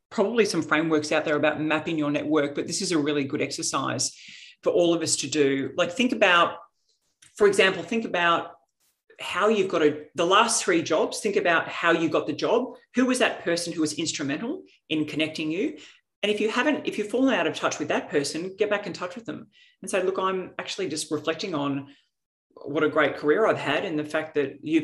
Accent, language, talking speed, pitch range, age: Australian, English, 220 wpm, 150-185 Hz, 40-59